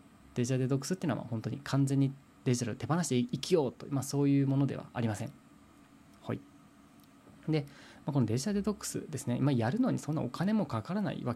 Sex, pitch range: male, 115-145 Hz